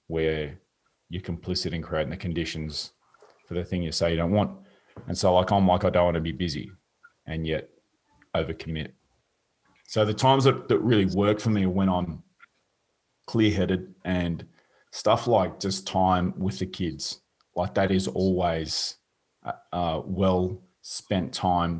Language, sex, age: English, male, 30-49